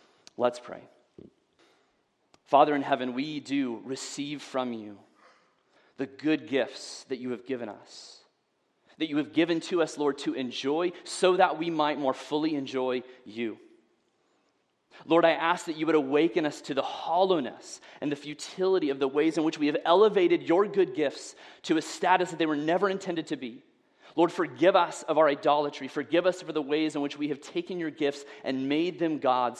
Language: English